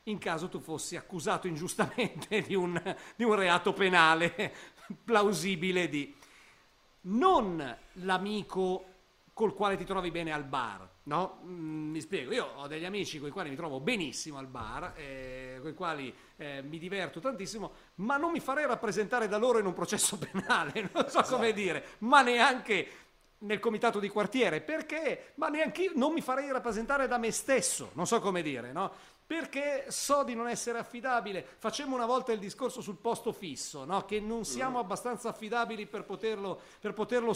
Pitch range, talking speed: 175-240 Hz, 170 wpm